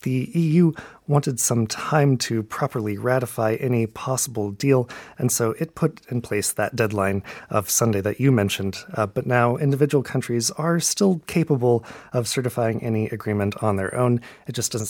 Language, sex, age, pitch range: Korean, male, 30-49, 105-135 Hz